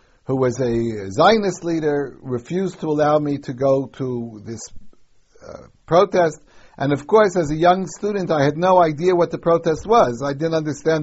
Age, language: 60-79, English